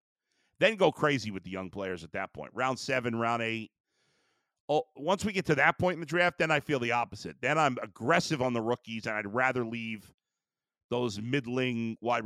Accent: American